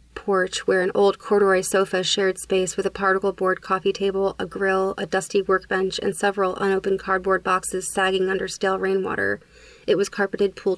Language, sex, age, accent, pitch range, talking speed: English, female, 30-49, American, 185-210 Hz, 180 wpm